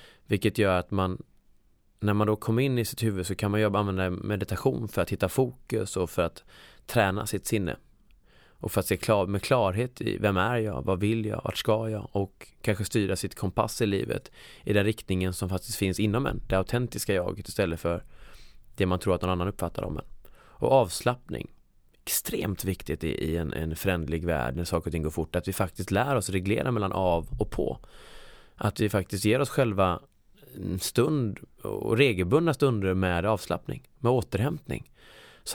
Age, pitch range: 20-39, 90-110 Hz